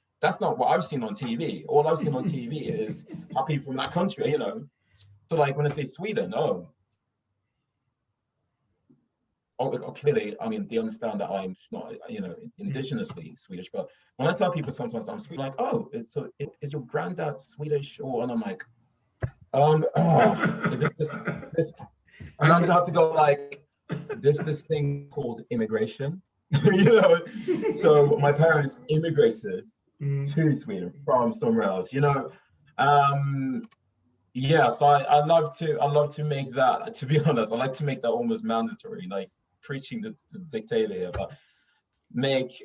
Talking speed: 170 wpm